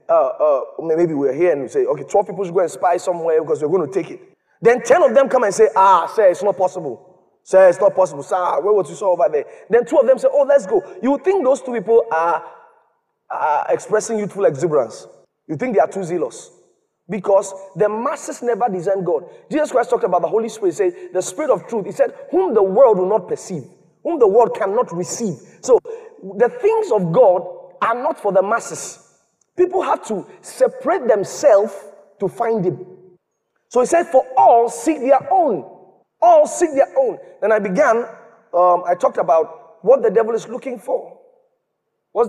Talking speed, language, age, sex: 205 wpm, English, 30-49, male